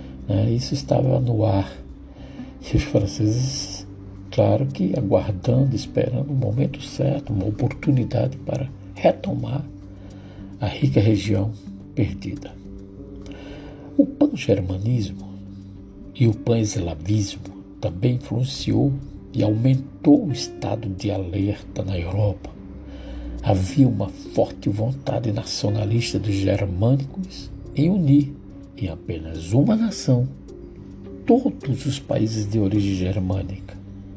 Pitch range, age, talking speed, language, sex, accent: 95-140 Hz, 60-79, 100 wpm, Portuguese, male, Brazilian